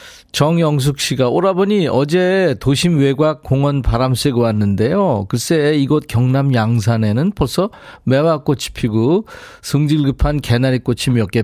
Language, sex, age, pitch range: Korean, male, 40-59, 105-150 Hz